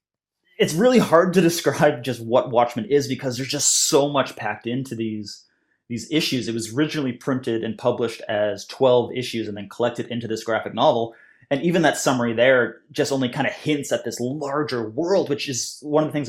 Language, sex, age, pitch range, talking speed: English, male, 30-49, 110-135 Hz, 205 wpm